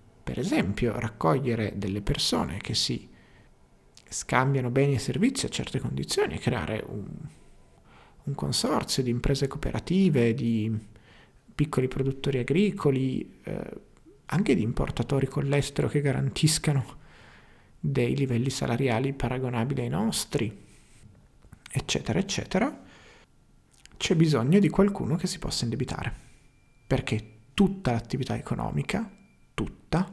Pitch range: 120-145 Hz